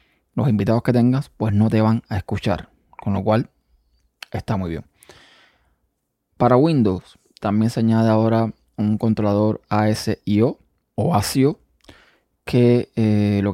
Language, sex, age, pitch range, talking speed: Spanish, male, 20-39, 100-115 Hz, 135 wpm